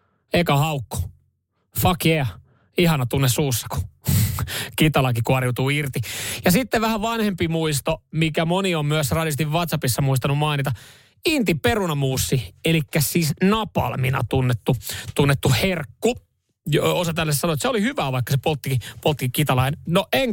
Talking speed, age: 135 wpm, 30-49